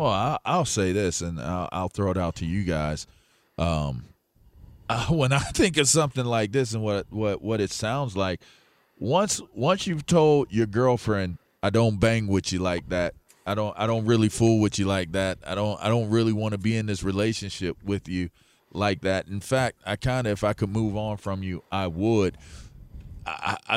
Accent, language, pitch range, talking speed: American, English, 95-120 Hz, 200 wpm